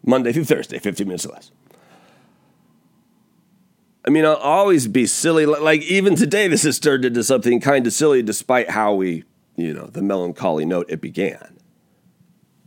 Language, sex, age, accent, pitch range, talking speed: English, male, 40-59, American, 120-185 Hz, 160 wpm